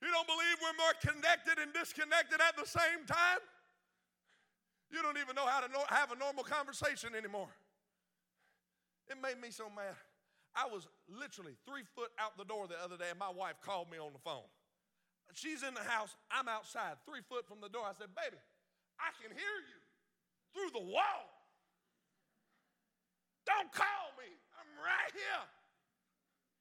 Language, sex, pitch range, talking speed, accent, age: English, male, 230-310 Hz, 165 wpm, American, 50-69